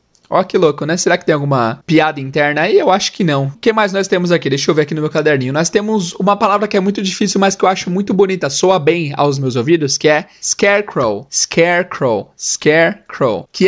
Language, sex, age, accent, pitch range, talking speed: Portuguese, male, 20-39, Brazilian, 150-195 Hz, 235 wpm